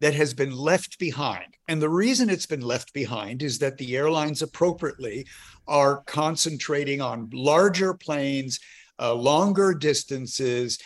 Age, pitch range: 50-69, 135-170 Hz